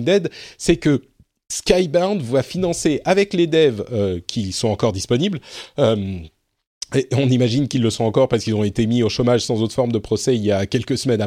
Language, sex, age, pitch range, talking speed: French, male, 40-59, 110-145 Hz, 210 wpm